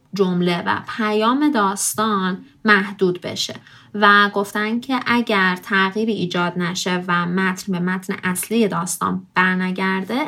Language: Persian